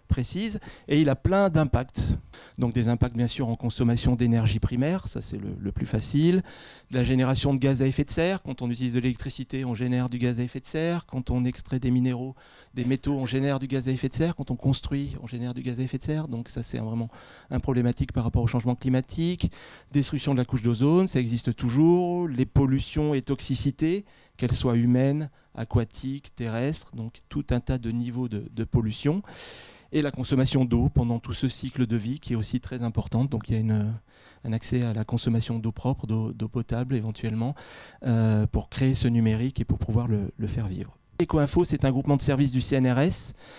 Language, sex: French, male